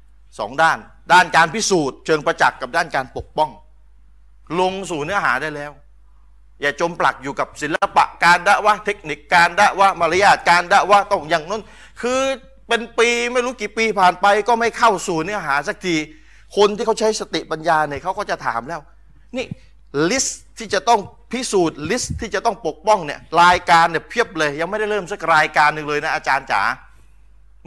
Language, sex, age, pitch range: Thai, male, 30-49, 125-200 Hz